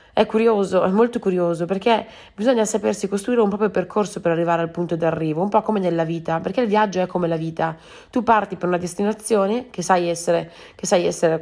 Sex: female